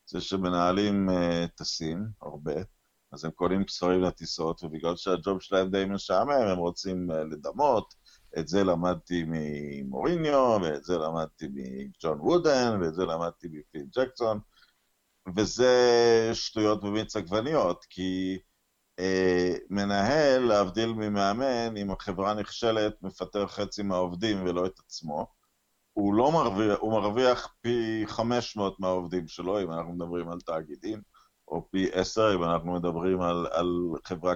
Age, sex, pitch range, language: 50-69, male, 90-115 Hz, Hebrew